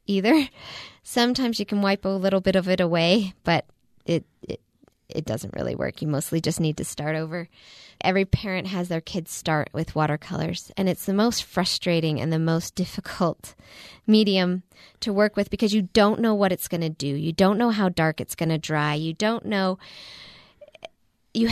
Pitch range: 165-205 Hz